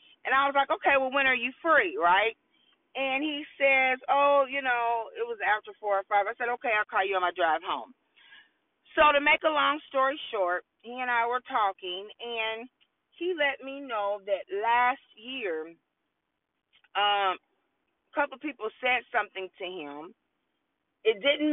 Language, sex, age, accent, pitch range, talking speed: English, female, 40-59, American, 225-305 Hz, 175 wpm